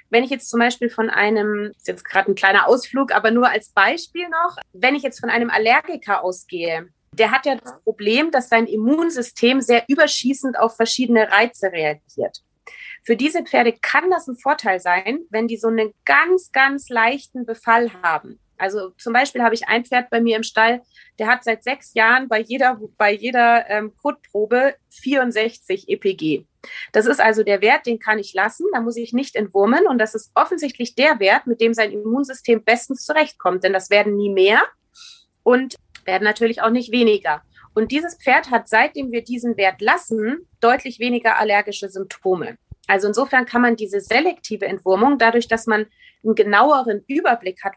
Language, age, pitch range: German, 30-49, 210-260 Hz